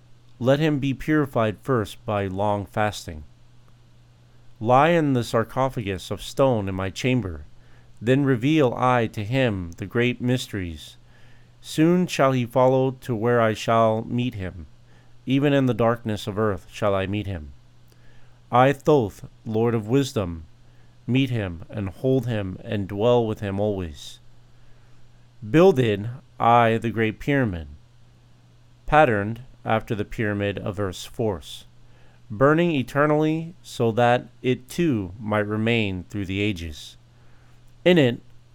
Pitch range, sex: 105-125 Hz, male